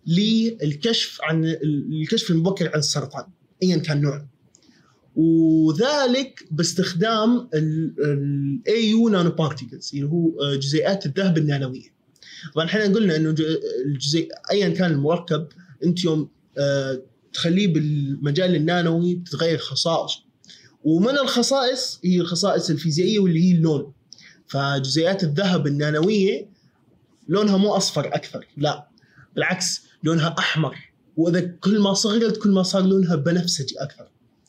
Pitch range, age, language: 145-190 Hz, 20-39, Arabic